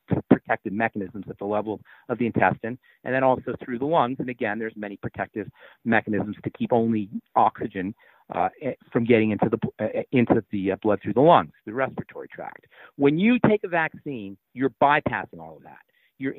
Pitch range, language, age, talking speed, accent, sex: 110-155 Hz, English, 50-69, 180 wpm, American, male